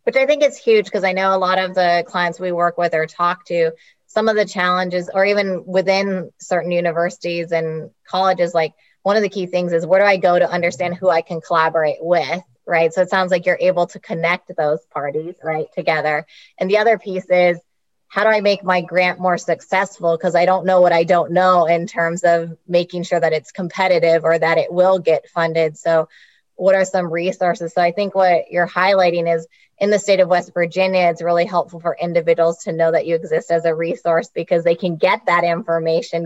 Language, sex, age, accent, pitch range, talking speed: English, female, 20-39, American, 165-185 Hz, 220 wpm